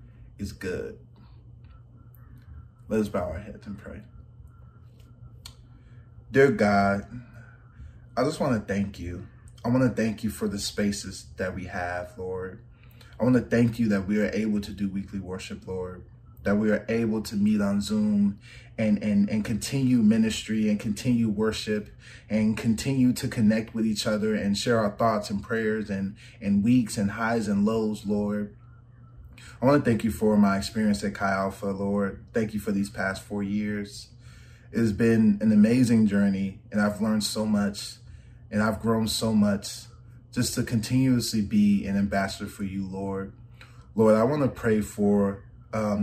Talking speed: 165 wpm